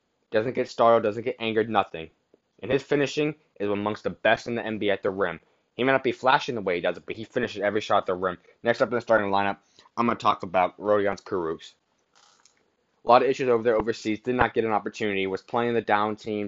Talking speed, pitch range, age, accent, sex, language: 250 wpm, 100-120 Hz, 20-39, American, male, English